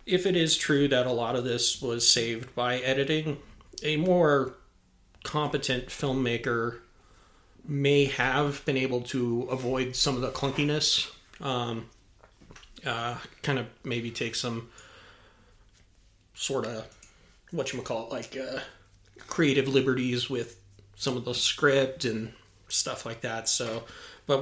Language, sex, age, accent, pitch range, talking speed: English, male, 30-49, American, 110-135 Hz, 130 wpm